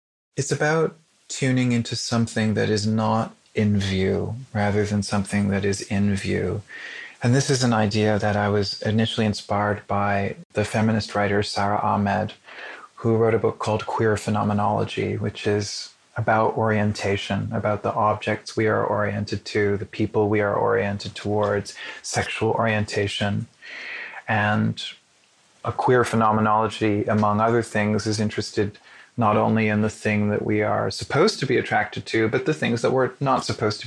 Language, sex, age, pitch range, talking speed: English, male, 30-49, 105-115 Hz, 160 wpm